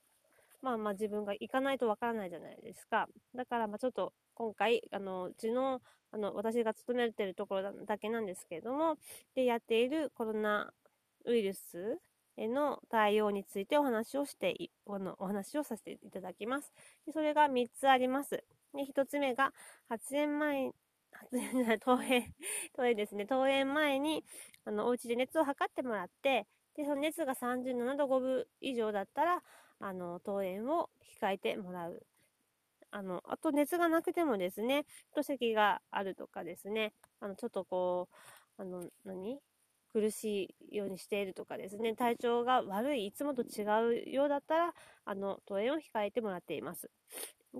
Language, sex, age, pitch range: Japanese, female, 20-39, 205-275 Hz